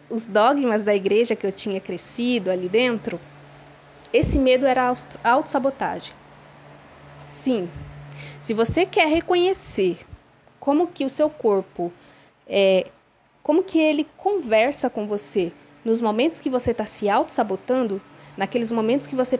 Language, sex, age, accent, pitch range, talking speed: Portuguese, female, 20-39, Brazilian, 200-265 Hz, 135 wpm